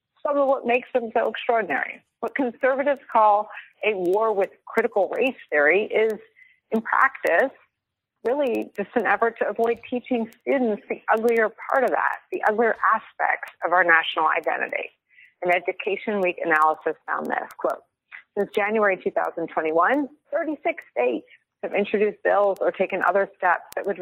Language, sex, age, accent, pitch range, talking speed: English, female, 30-49, American, 185-240 Hz, 150 wpm